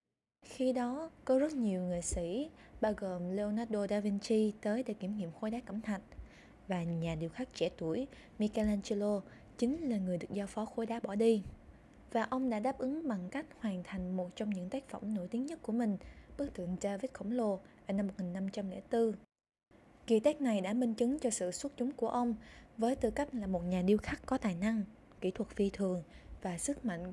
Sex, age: female, 20-39